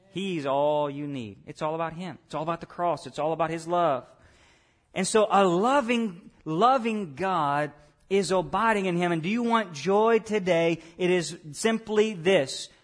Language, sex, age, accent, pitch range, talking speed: English, male, 40-59, American, 155-195 Hz, 180 wpm